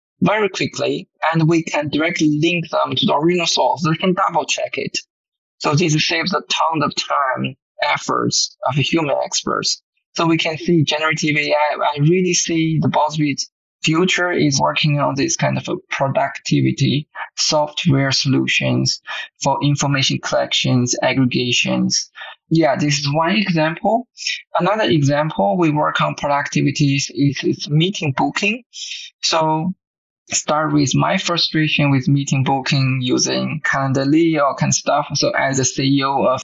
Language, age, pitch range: English, 20-39, 140-170 Hz